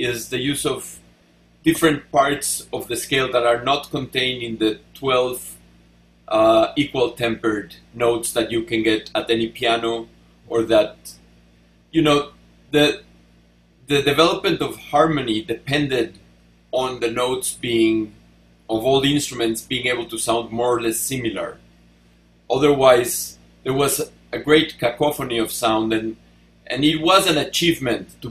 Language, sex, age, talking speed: English, male, 40-59, 140 wpm